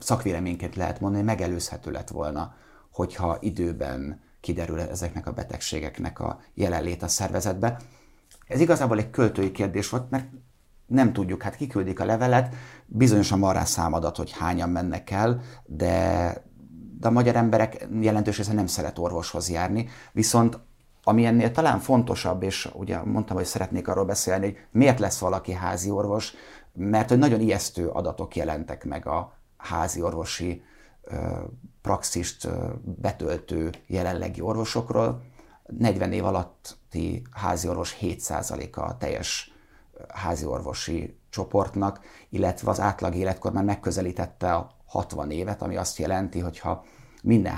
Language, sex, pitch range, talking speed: Hungarian, male, 90-110 Hz, 130 wpm